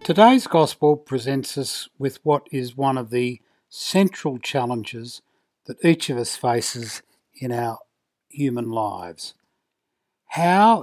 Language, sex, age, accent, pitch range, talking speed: English, male, 60-79, Australian, 125-155 Hz, 120 wpm